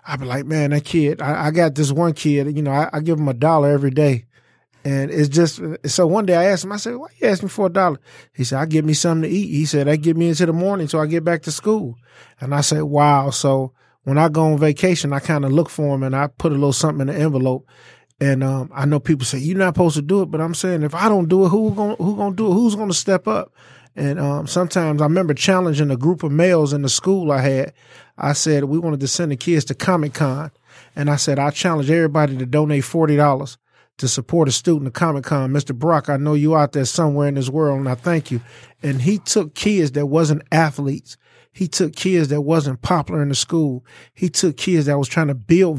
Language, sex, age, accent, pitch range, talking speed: English, male, 20-39, American, 140-170 Hz, 260 wpm